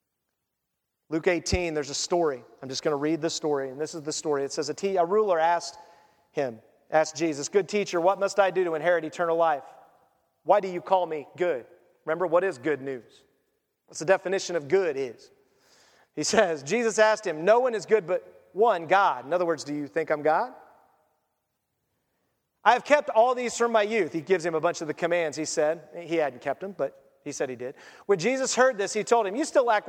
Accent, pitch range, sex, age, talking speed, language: American, 155-205 Hz, male, 40-59, 220 wpm, English